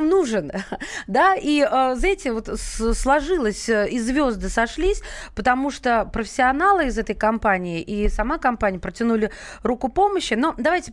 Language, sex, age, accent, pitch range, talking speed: Russian, female, 20-39, native, 205-265 Hz, 125 wpm